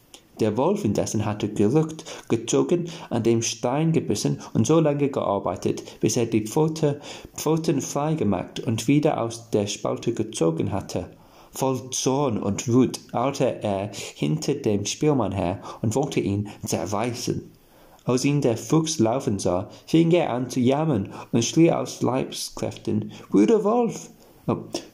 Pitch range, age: 110-155 Hz, 40-59